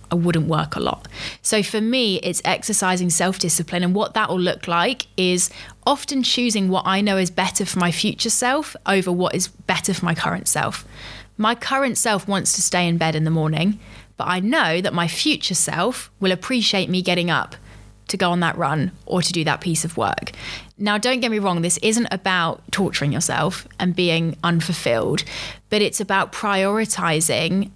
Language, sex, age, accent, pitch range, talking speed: English, female, 20-39, British, 170-205 Hz, 195 wpm